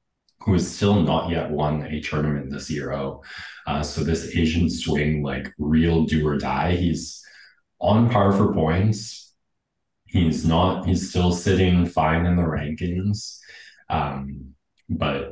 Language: English